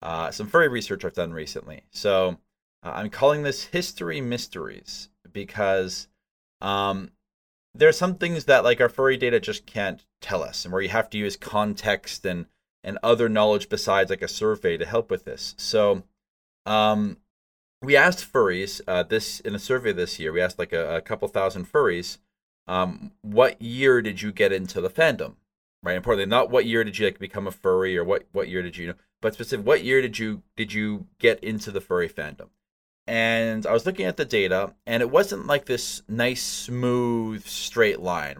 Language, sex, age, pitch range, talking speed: English, male, 30-49, 95-140 Hz, 190 wpm